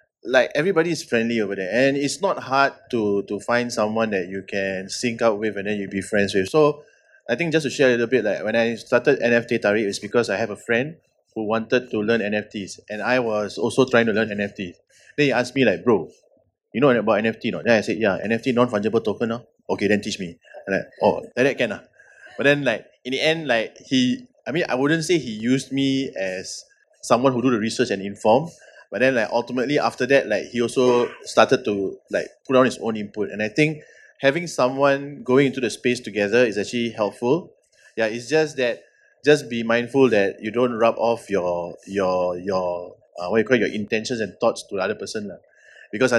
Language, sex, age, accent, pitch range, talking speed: English, male, 20-39, Malaysian, 105-130 Hz, 225 wpm